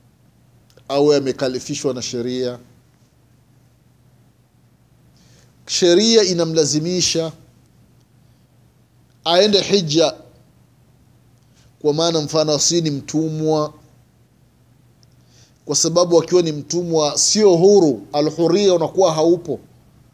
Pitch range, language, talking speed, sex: 135-215 Hz, Swahili, 70 wpm, male